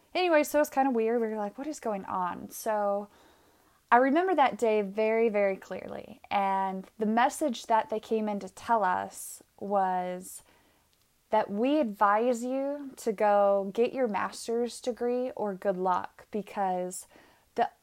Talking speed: 160 wpm